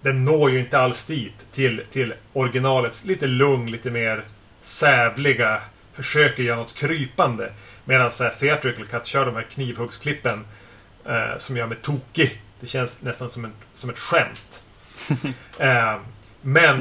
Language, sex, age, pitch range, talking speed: Swedish, male, 30-49, 120-145 Hz, 145 wpm